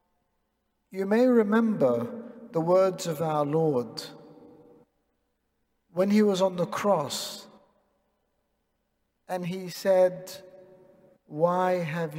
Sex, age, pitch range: male, 50-69, 175-225 Hz